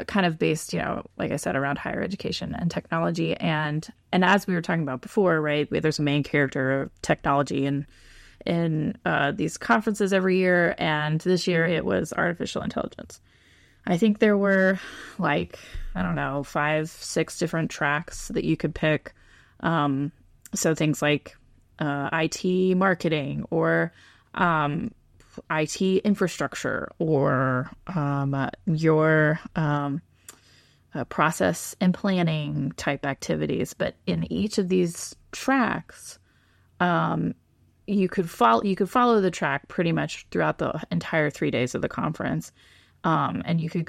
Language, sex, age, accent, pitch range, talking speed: English, female, 20-39, American, 145-185 Hz, 150 wpm